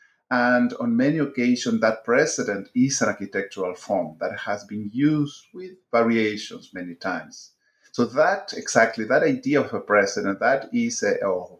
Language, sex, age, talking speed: English, male, 50-69, 155 wpm